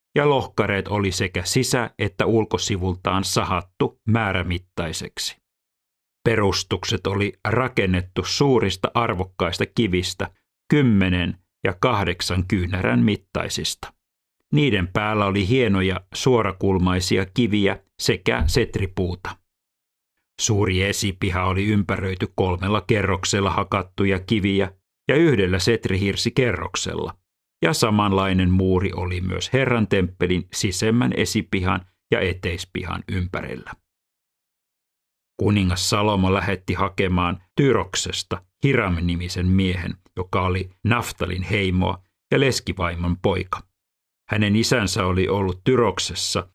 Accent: native